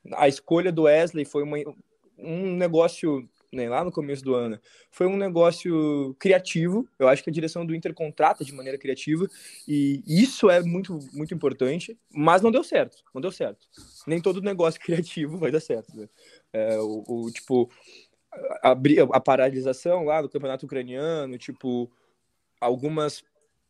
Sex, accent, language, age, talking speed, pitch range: male, Brazilian, Portuguese, 20-39, 160 wpm, 140-190 Hz